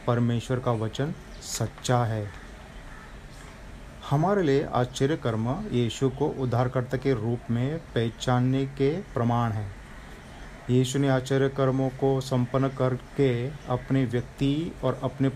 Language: Hindi